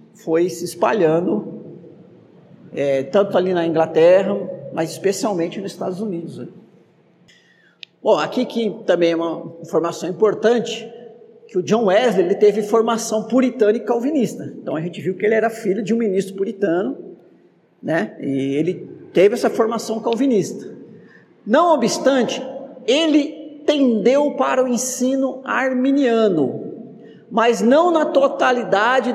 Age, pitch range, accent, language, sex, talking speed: 50-69, 185-255 Hz, Brazilian, Portuguese, male, 125 wpm